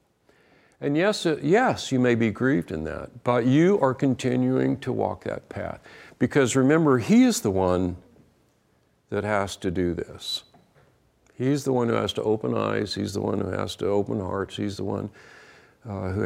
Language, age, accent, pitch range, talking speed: English, 60-79, American, 95-130 Hz, 180 wpm